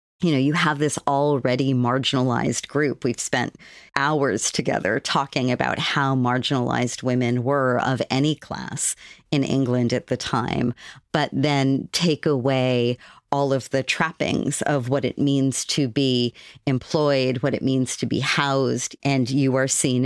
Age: 40-59